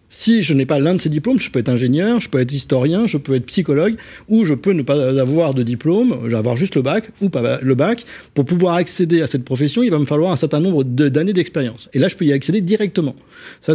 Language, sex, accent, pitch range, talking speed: French, male, French, 135-180 Hz, 265 wpm